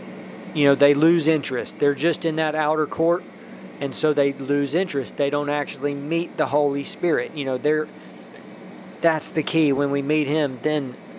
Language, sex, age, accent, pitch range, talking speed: English, male, 40-59, American, 135-160 Hz, 180 wpm